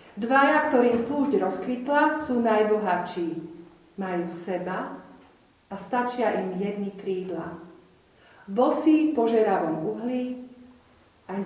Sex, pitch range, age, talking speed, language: female, 175-225 Hz, 40-59, 90 wpm, Slovak